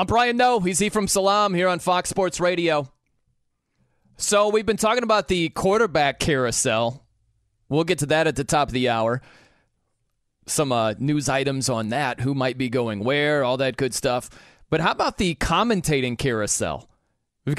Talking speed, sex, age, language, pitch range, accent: 175 wpm, male, 30-49, English, 125-160 Hz, American